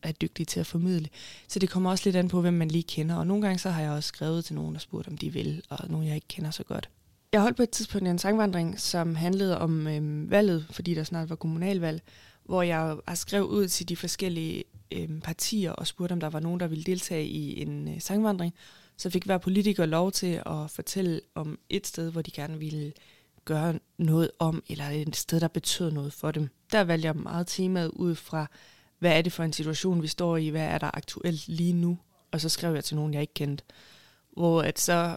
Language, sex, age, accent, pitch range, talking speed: Danish, female, 20-39, native, 155-185 Hz, 235 wpm